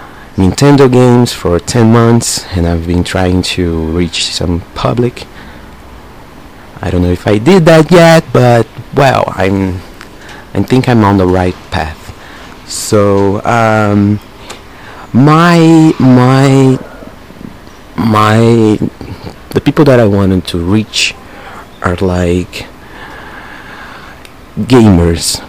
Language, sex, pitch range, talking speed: English, male, 85-110 Hz, 110 wpm